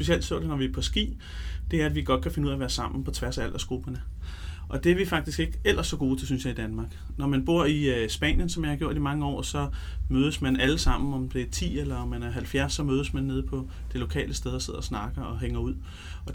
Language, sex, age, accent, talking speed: Danish, male, 30-49, native, 290 wpm